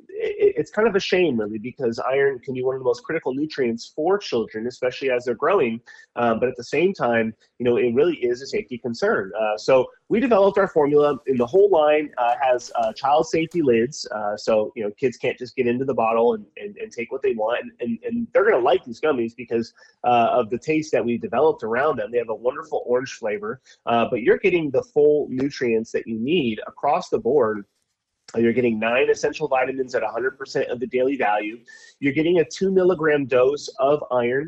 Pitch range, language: 120-195 Hz, English